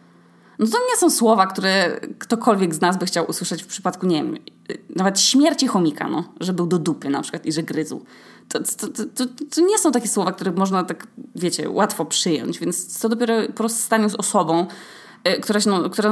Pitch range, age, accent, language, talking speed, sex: 175-225 Hz, 20-39, native, Polish, 210 wpm, female